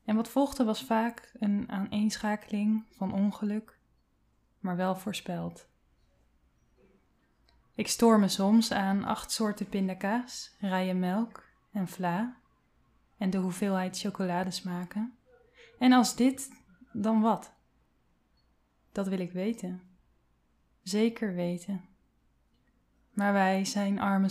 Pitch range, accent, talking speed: 185-220 Hz, Dutch, 105 wpm